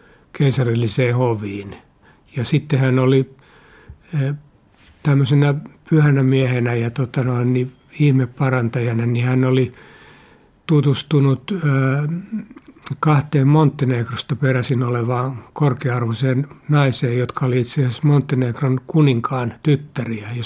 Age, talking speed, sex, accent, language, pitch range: 60-79, 90 wpm, male, native, Finnish, 120-140 Hz